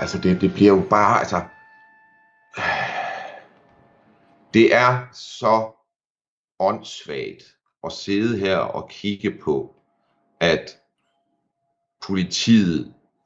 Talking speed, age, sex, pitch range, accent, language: 85 wpm, 60-79, male, 110-150 Hz, native, Danish